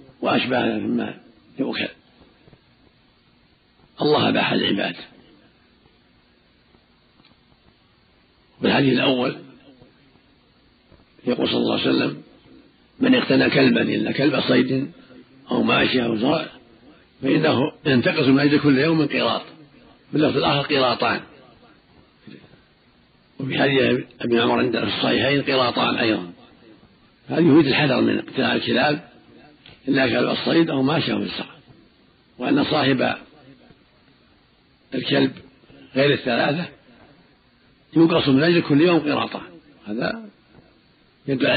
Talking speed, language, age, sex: 100 wpm, Arabic, 50-69, male